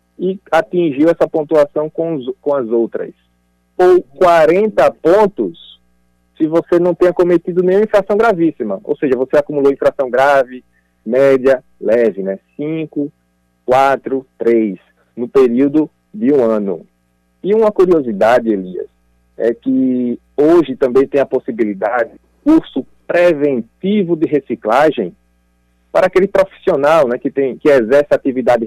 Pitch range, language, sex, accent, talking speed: 115-170 Hz, Portuguese, male, Brazilian, 125 wpm